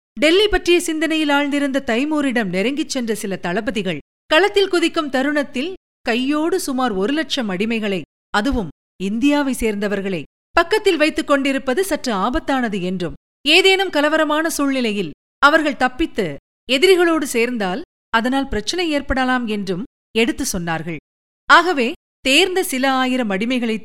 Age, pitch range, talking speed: 50-69, 205-300 Hz, 105 wpm